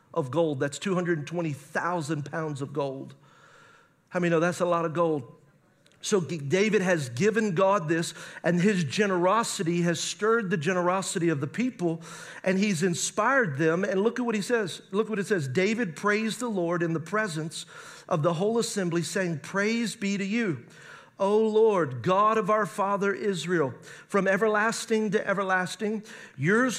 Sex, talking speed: male, 165 wpm